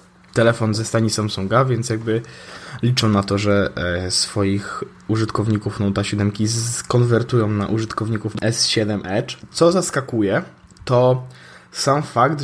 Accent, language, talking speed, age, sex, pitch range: native, Polish, 115 wpm, 20-39, male, 105-125 Hz